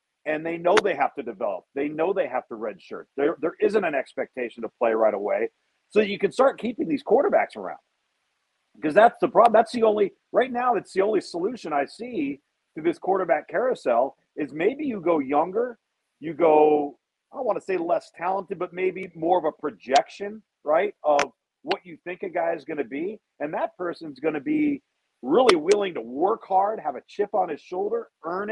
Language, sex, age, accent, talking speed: English, male, 40-59, American, 205 wpm